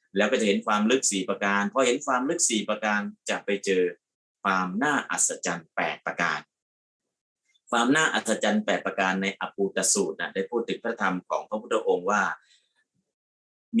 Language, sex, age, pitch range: Thai, male, 30-49, 95-120 Hz